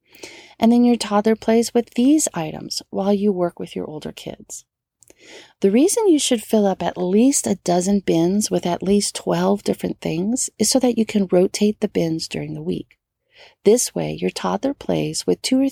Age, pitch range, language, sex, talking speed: 40-59, 175-240 Hz, English, female, 195 wpm